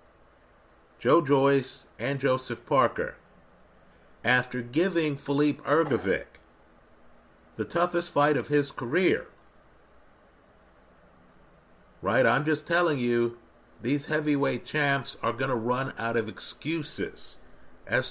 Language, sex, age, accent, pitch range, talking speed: English, male, 50-69, American, 115-150 Hz, 105 wpm